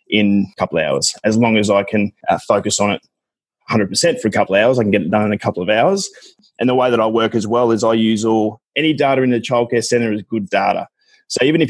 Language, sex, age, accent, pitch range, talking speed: English, male, 20-39, Australian, 105-120 Hz, 275 wpm